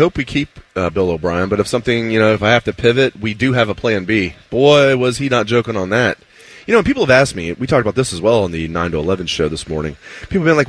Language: English